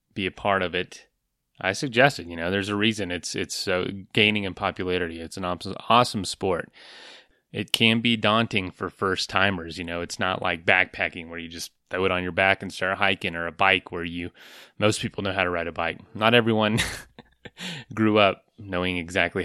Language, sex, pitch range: English, male, 90-110 Hz